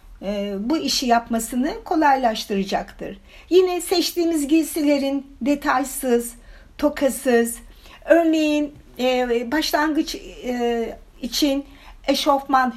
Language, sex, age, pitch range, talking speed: Turkish, female, 60-79, 230-295 Hz, 75 wpm